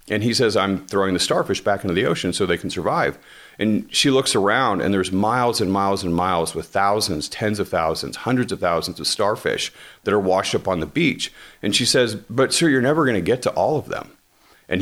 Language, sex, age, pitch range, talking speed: English, male, 40-59, 95-120 Hz, 235 wpm